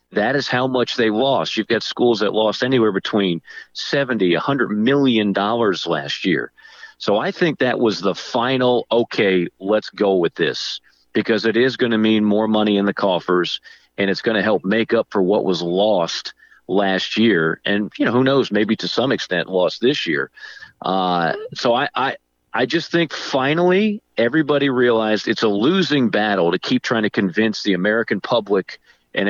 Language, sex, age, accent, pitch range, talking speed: English, male, 40-59, American, 100-130 Hz, 185 wpm